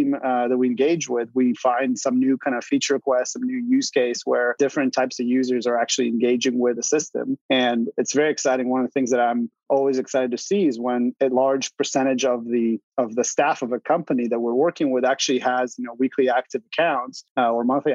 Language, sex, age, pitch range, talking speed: English, male, 30-49, 125-145 Hz, 230 wpm